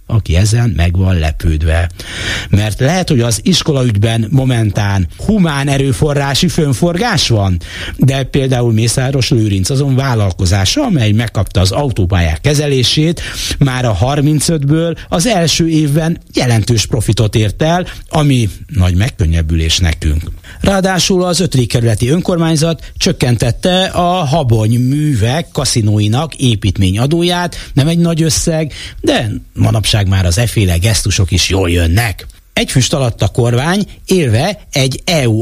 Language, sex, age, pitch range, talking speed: Hungarian, male, 60-79, 100-160 Hz, 120 wpm